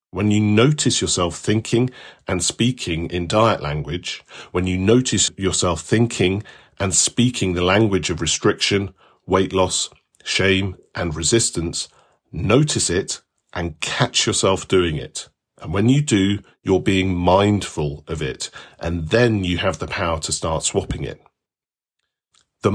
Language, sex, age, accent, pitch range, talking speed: English, male, 40-59, British, 85-115 Hz, 140 wpm